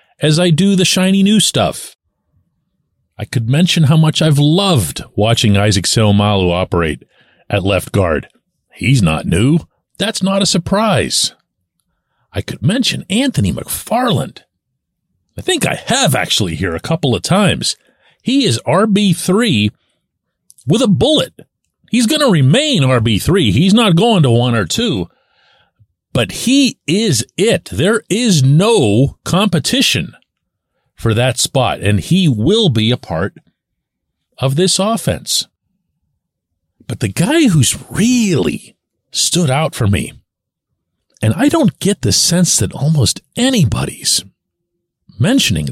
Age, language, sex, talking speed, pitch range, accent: 40-59, English, male, 130 wpm, 115-185 Hz, American